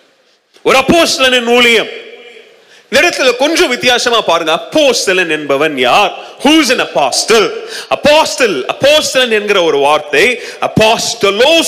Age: 30-49